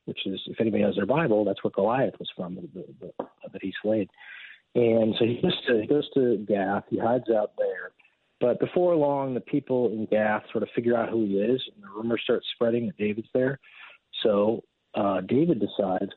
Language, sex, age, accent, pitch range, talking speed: English, male, 40-59, American, 105-125 Hz, 210 wpm